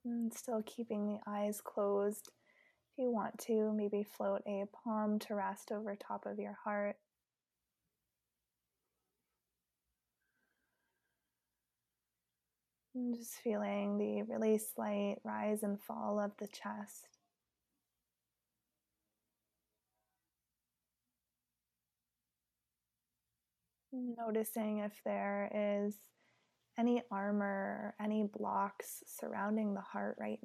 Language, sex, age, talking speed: English, female, 20-39, 90 wpm